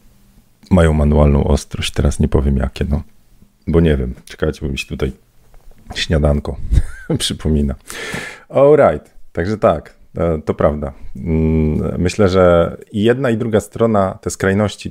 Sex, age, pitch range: male, 40-59, 75-95 Hz